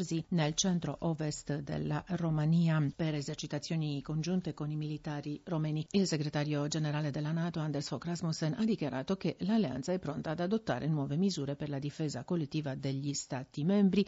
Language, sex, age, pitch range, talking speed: Italian, female, 50-69, 145-185 Hz, 150 wpm